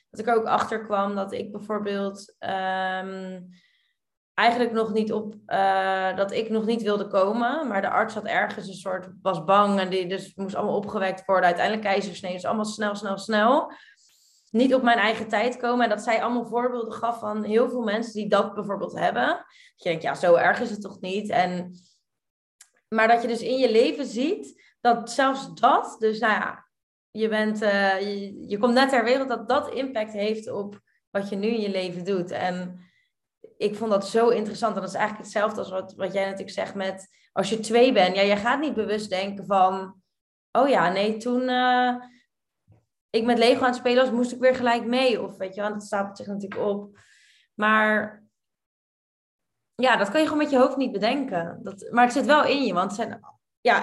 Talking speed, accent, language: 205 wpm, Dutch, Dutch